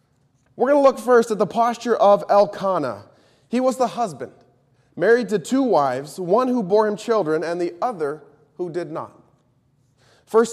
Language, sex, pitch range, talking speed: English, male, 140-205 Hz, 170 wpm